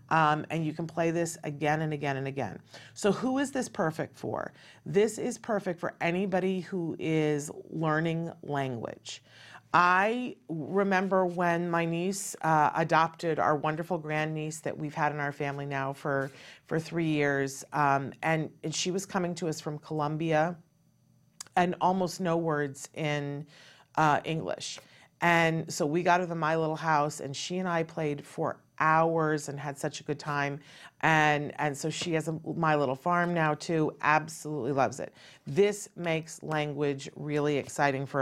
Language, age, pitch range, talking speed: English, 40-59, 145-175 Hz, 165 wpm